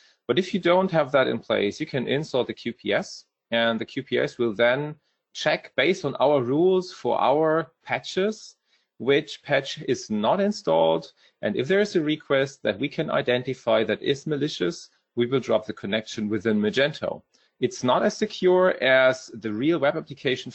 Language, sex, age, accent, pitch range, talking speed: English, male, 30-49, German, 115-170 Hz, 175 wpm